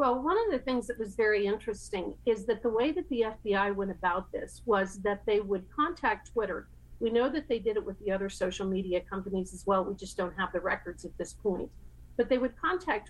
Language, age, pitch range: English, 50-69, 195-230 Hz